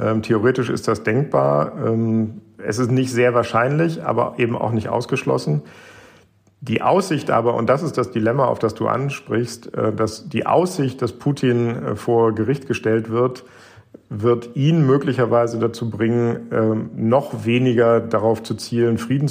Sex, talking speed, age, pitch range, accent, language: male, 145 wpm, 50-69, 110-125 Hz, German, German